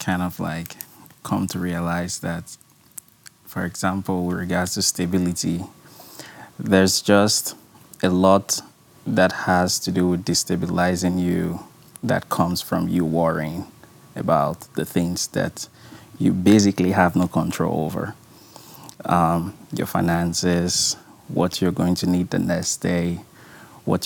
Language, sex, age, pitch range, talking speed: English, male, 20-39, 90-105 Hz, 125 wpm